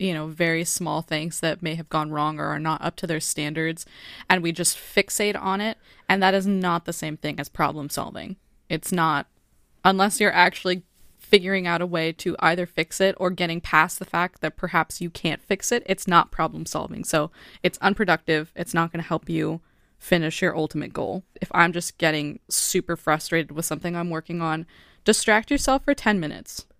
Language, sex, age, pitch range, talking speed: English, female, 20-39, 165-195 Hz, 200 wpm